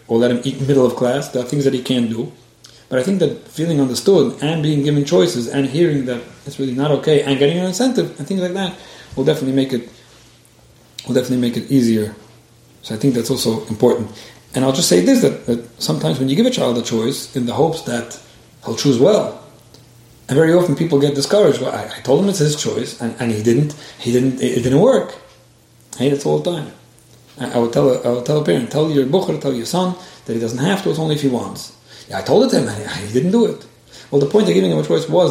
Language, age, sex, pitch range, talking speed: English, 40-59, male, 120-155 Hz, 255 wpm